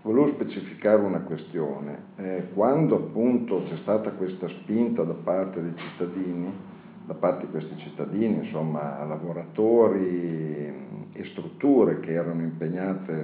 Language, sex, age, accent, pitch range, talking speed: Italian, male, 50-69, native, 85-100 Hz, 120 wpm